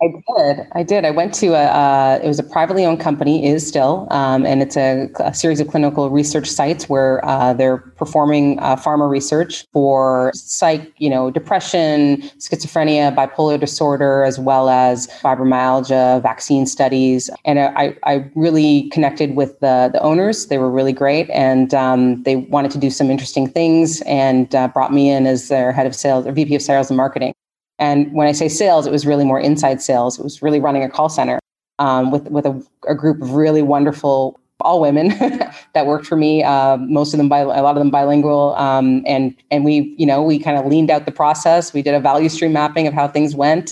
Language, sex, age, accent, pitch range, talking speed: English, female, 30-49, American, 135-150 Hz, 205 wpm